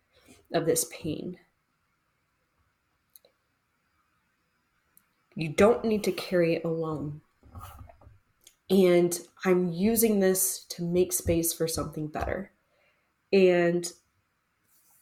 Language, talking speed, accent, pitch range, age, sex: English, 85 wpm, American, 165-190 Hz, 20-39, female